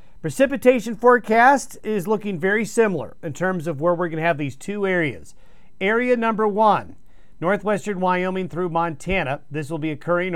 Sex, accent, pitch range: male, American, 150-200 Hz